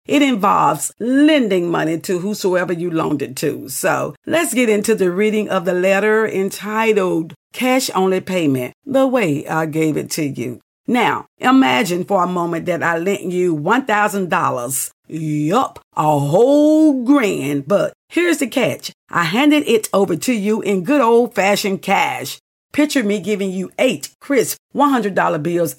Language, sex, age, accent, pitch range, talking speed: English, female, 50-69, American, 175-240 Hz, 155 wpm